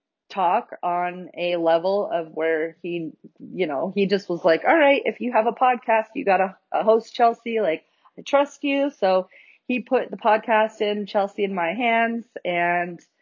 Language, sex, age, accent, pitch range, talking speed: English, female, 30-49, American, 175-220 Hz, 180 wpm